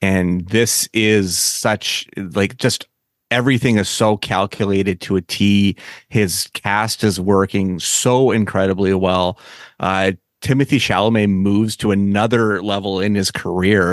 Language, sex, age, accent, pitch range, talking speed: English, male, 30-49, American, 95-110 Hz, 130 wpm